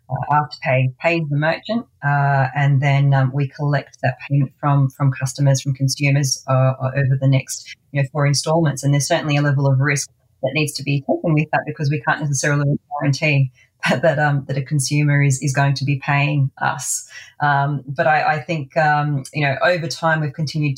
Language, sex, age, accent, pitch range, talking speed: English, female, 30-49, Australian, 135-155 Hz, 200 wpm